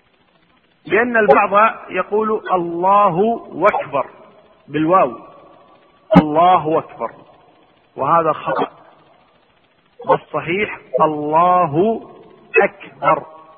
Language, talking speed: Arabic, 55 wpm